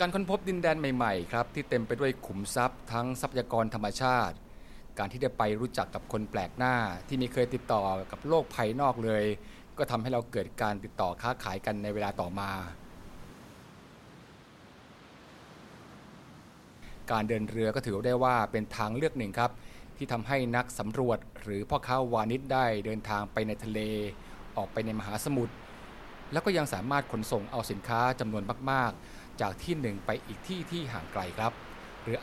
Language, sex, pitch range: Thai, male, 105-130 Hz